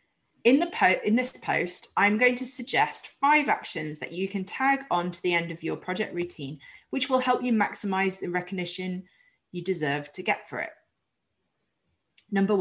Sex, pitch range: female, 170-235 Hz